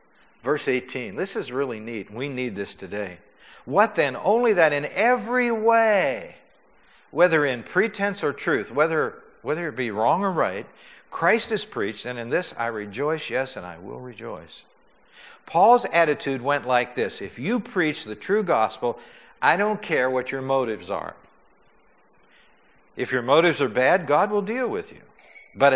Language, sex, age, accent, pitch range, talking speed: English, male, 60-79, American, 130-210 Hz, 165 wpm